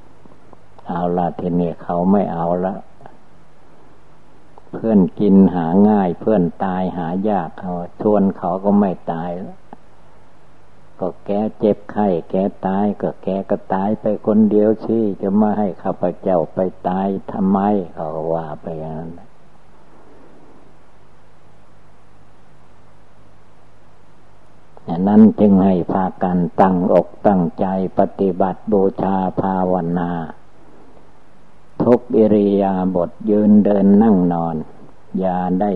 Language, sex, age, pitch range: Thai, male, 60-79, 90-105 Hz